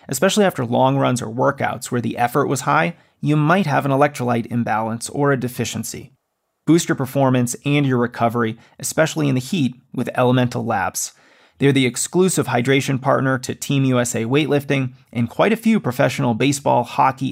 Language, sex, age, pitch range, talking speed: English, male, 30-49, 120-145 Hz, 170 wpm